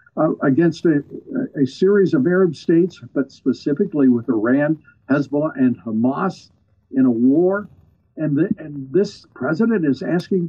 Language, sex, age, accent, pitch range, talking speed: English, male, 60-79, American, 140-200 Hz, 135 wpm